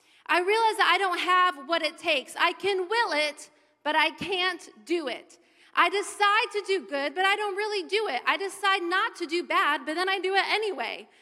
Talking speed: 220 wpm